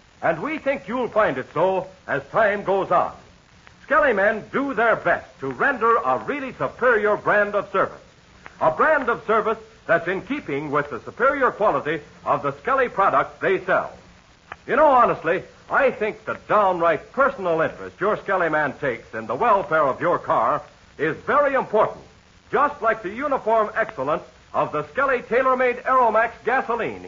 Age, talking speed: 60-79, 165 wpm